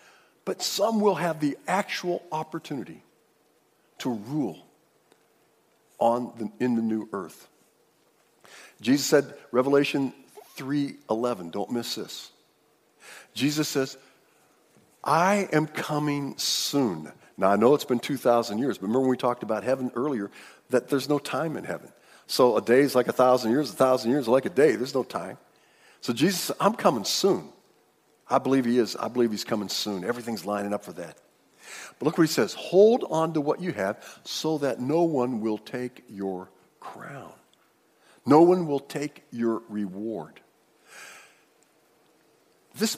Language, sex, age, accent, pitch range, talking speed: English, male, 50-69, American, 125-175 Hz, 155 wpm